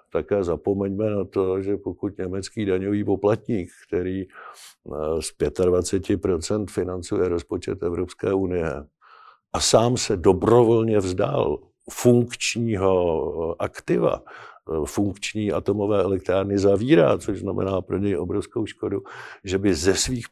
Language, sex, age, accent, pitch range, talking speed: Czech, male, 50-69, native, 95-115 Hz, 110 wpm